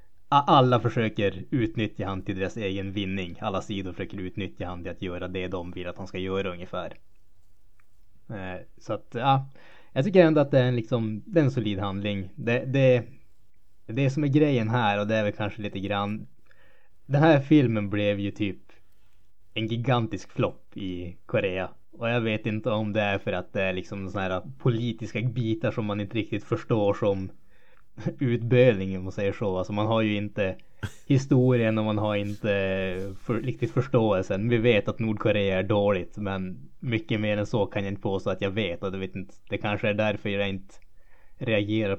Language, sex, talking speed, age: Swedish, male, 180 wpm, 20-39